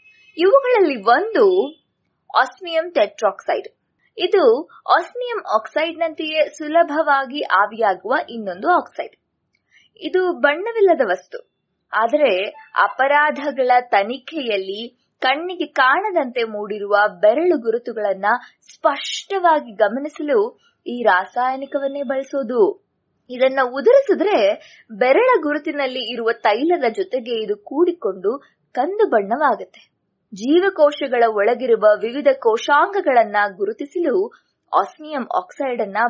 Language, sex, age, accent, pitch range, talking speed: English, female, 20-39, Indian, 240-350 Hz, 70 wpm